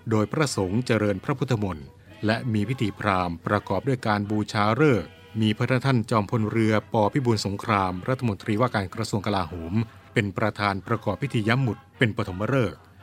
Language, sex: Thai, male